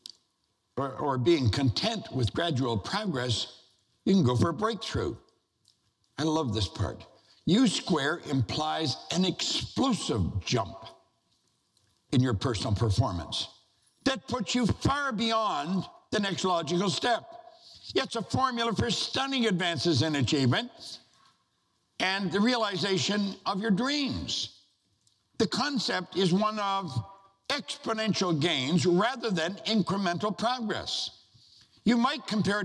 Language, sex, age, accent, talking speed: English, male, 60-79, American, 115 wpm